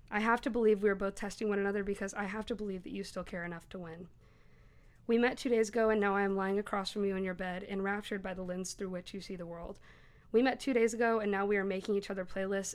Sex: female